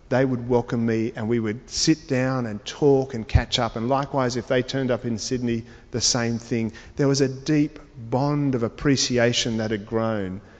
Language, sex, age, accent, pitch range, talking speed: English, male, 50-69, Australian, 115-150 Hz, 200 wpm